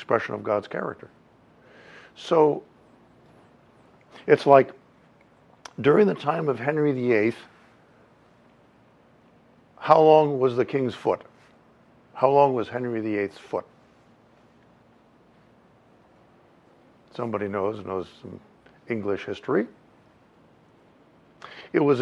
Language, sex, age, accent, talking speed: English, male, 60-79, American, 90 wpm